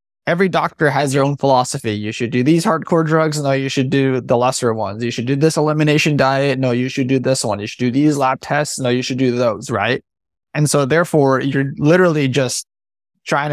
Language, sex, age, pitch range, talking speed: English, male, 20-39, 125-150 Hz, 220 wpm